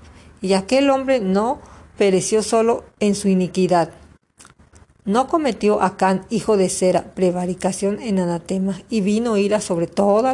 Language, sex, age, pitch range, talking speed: Spanish, female, 50-69, 170-215 Hz, 135 wpm